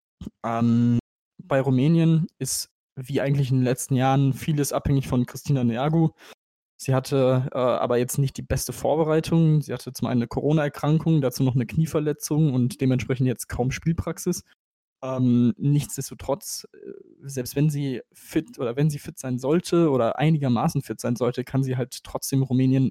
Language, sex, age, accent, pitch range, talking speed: German, male, 20-39, German, 125-145 Hz, 160 wpm